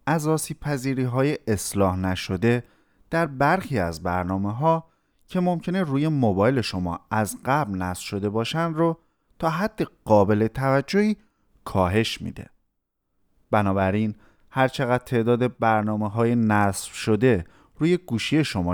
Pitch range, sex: 95-150 Hz, male